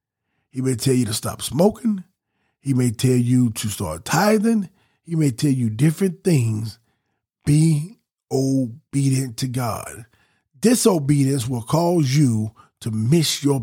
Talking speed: 135 wpm